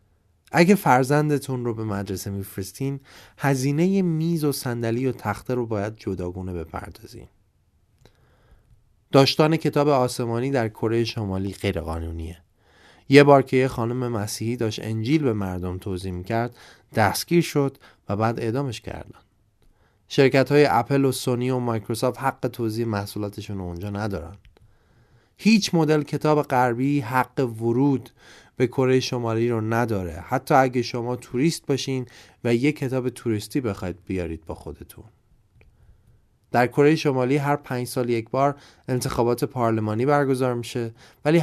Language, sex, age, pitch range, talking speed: Persian, male, 30-49, 105-140 Hz, 130 wpm